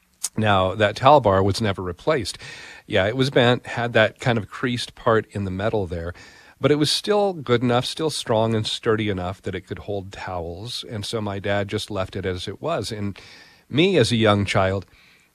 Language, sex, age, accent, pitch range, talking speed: English, male, 40-59, American, 95-115 Hz, 205 wpm